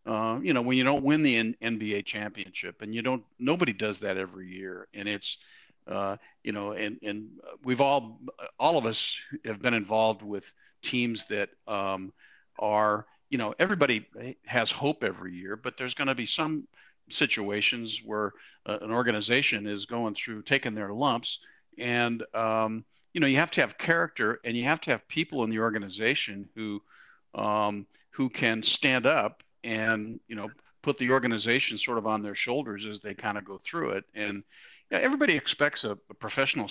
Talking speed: 185 wpm